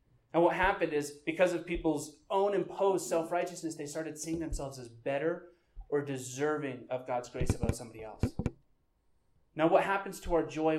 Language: English